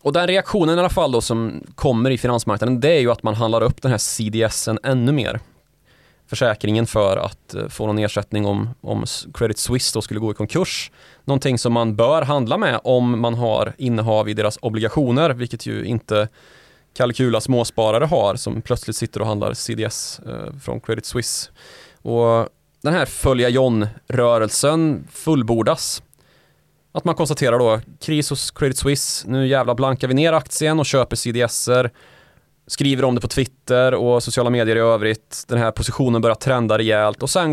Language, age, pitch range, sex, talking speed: Swedish, 20-39, 110-135 Hz, male, 170 wpm